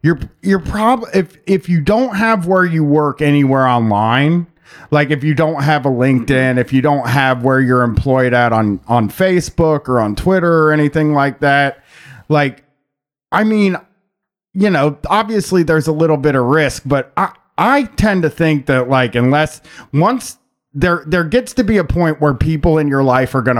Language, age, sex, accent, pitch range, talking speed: English, 30-49, male, American, 125-165 Hz, 190 wpm